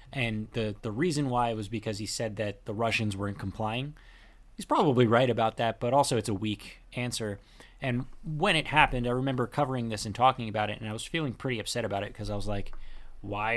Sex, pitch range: male, 105-135 Hz